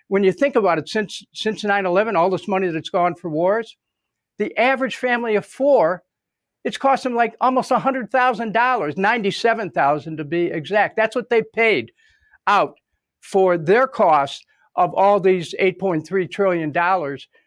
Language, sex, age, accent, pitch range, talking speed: English, male, 60-79, American, 170-220 Hz, 150 wpm